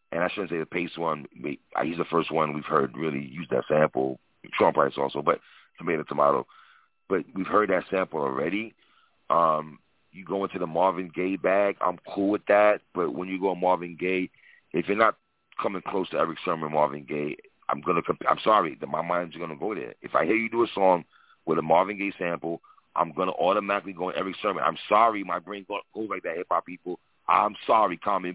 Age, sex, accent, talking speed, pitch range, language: 40-59, male, American, 225 wpm, 85-105 Hz, English